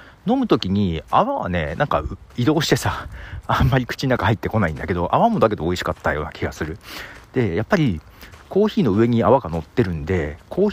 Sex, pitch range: male, 85-115 Hz